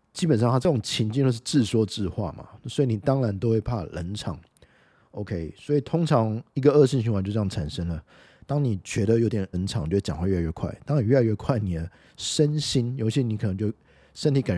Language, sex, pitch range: Chinese, male, 90-120 Hz